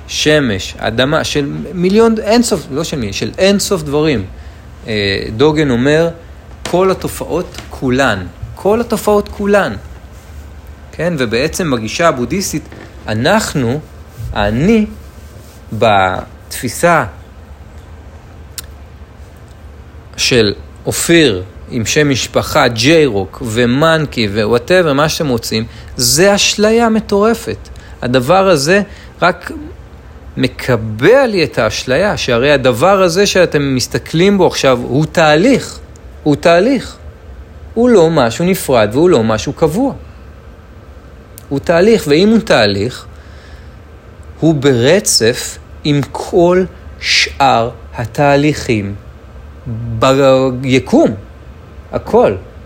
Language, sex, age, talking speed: Hebrew, male, 40-59, 90 wpm